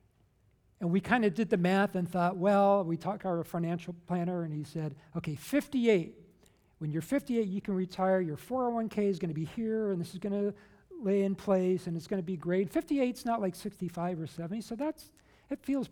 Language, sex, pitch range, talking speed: English, male, 160-205 Hz, 205 wpm